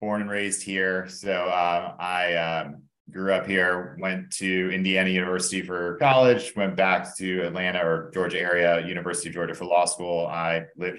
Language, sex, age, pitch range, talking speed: English, male, 30-49, 85-100 Hz, 175 wpm